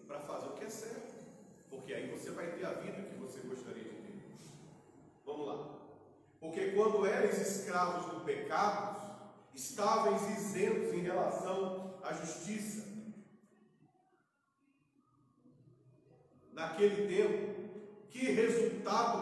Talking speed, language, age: 110 wpm, Portuguese, 40-59